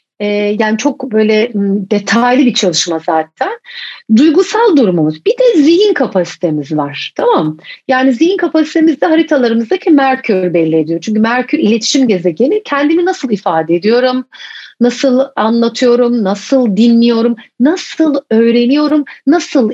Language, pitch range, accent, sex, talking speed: English, 205-300 Hz, Turkish, female, 115 wpm